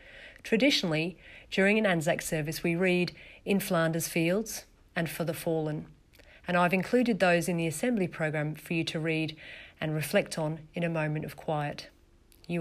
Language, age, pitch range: English, 40-59, 150-180 Hz